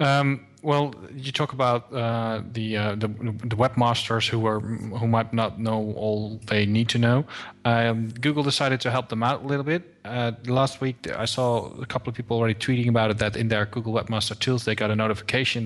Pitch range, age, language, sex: 110-130 Hz, 20-39, English, male